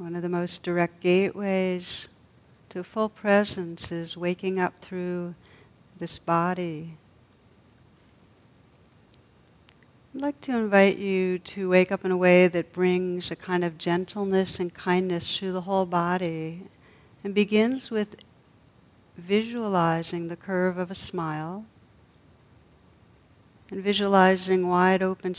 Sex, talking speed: female, 120 wpm